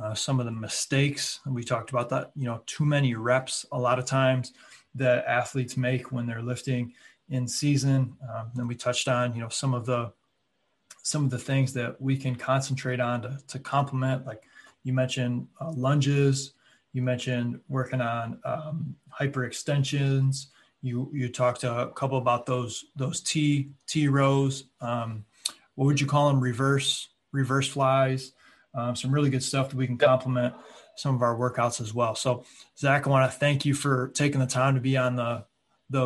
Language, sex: English, male